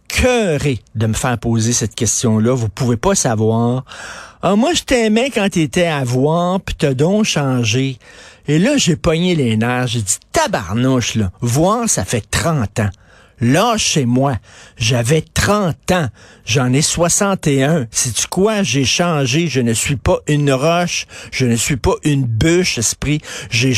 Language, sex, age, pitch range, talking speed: French, male, 50-69, 125-175 Hz, 165 wpm